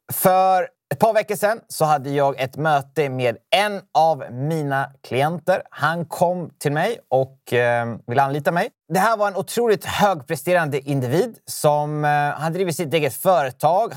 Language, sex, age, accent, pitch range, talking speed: Swedish, male, 30-49, native, 130-185 Hz, 165 wpm